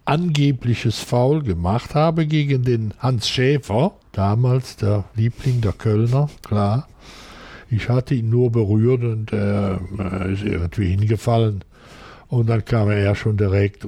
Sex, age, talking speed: male, 60-79, 135 wpm